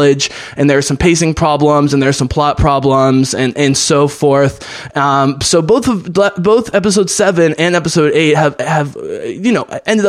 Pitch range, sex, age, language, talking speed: 140-175 Hz, male, 20-39, English, 185 wpm